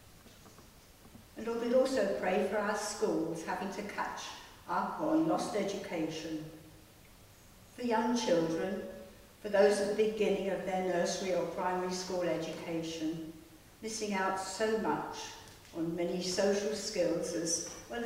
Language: English